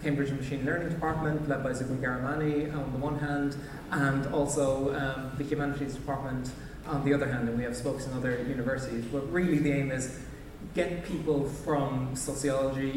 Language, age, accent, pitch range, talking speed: English, 20-39, Irish, 130-150 Hz, 175 wpm